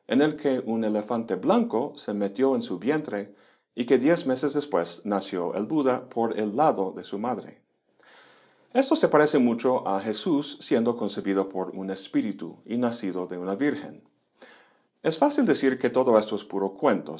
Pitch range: 100-130 Hz